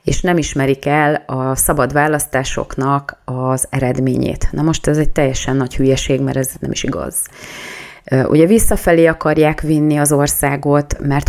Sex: female